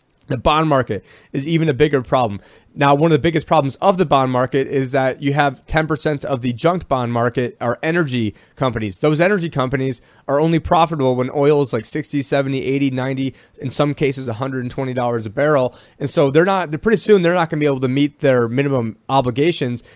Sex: male